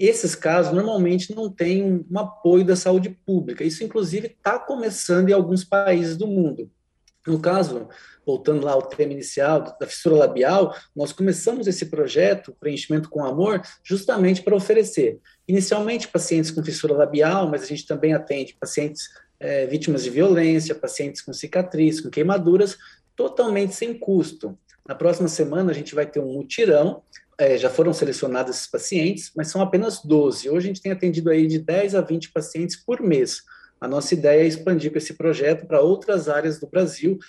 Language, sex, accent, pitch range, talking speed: Portuguese, male, Brazilian, 155-190 Hz, 165 wpm